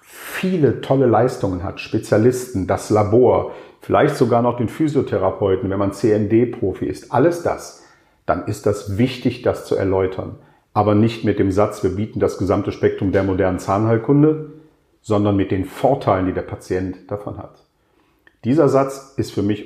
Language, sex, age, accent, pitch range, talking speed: German, male, 50-69, German, 100-130 Hz, 160 wpm